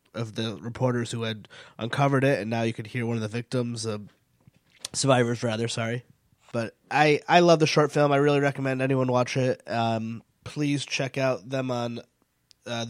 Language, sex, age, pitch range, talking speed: English, male, 20-39, 120-145 Hz, 190 wpm